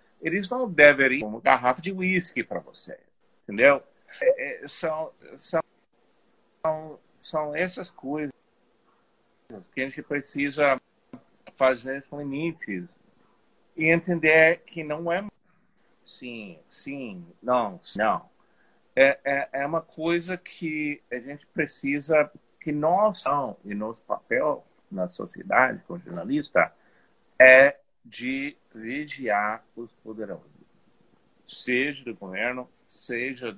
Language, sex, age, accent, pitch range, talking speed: Portuguese, male, 50-69, Brazilian, 120-170 Hz, 110 wpm